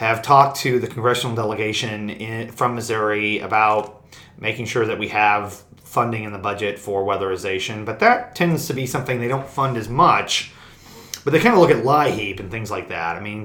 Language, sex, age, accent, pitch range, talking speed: English, male, 30-49, American, 100-120 Hz, 195 wpm